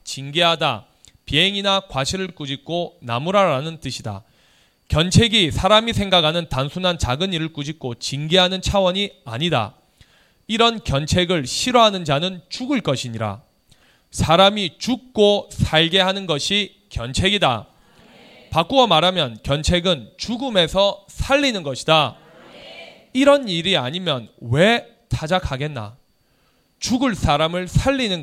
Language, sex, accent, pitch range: Korean, male, native, 135-190 Hz